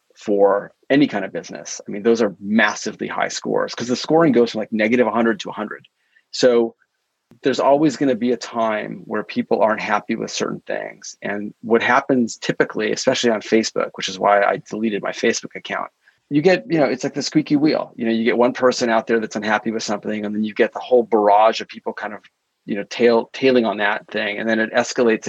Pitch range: 110-130 Hz